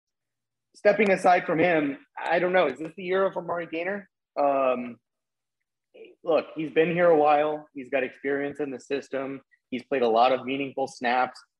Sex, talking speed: male, 170 wpm